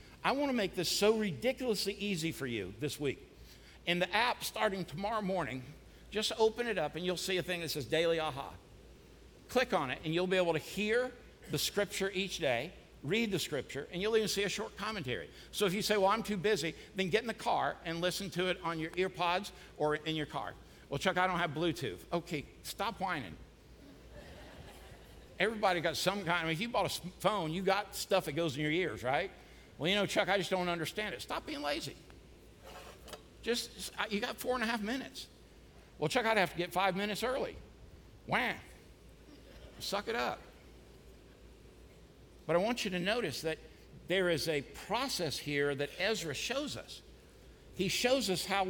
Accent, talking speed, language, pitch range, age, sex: American, 195 wpm, English, 165-210 Hz, 60-79, male